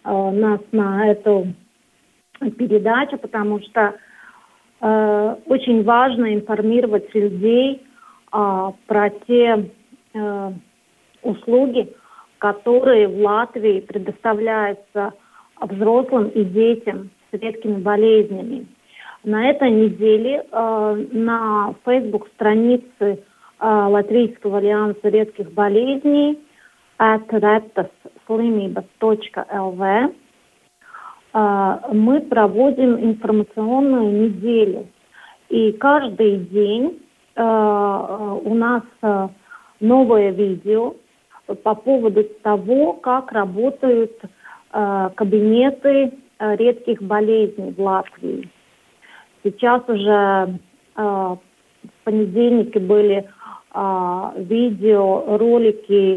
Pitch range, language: 205-235 Hz, Russian